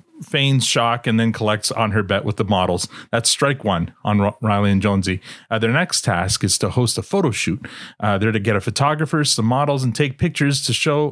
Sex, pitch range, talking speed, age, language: male, 110-145 Hz, 220 wpm, 30-49, English